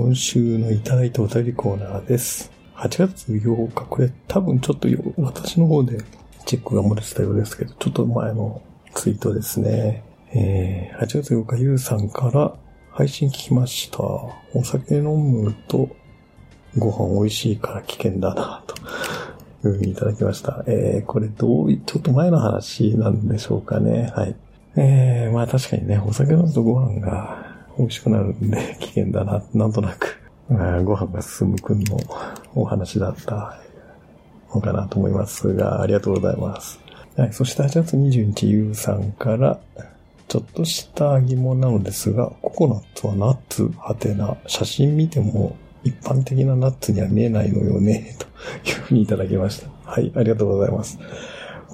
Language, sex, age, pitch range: Japanese, male, 50-69, 105-130 Hz